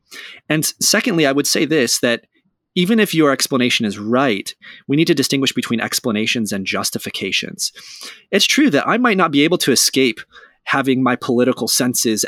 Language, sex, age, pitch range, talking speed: English, male, 30-49, 110-140 Hz, 170 wpm